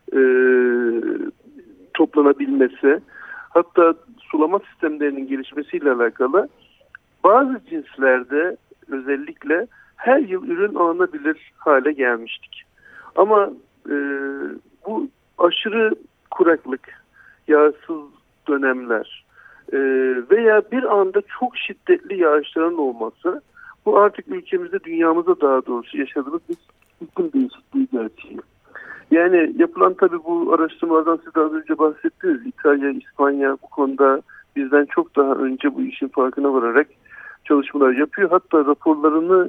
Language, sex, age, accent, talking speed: Turkish, male, 60-79, native, 100 wpm